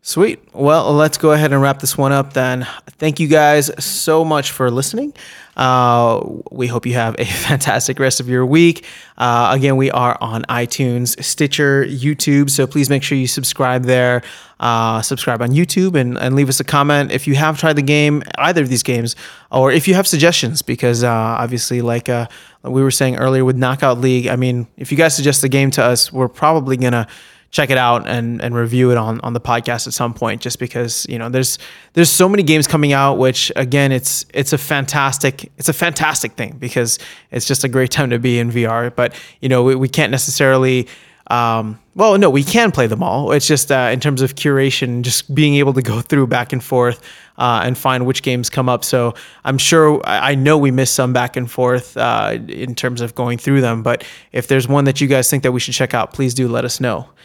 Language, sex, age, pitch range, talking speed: English, male, 20-39, 125-145 Hz, 225 wpm